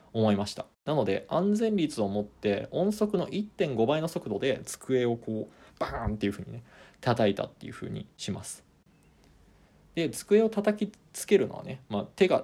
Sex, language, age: male, Japanese, 20-39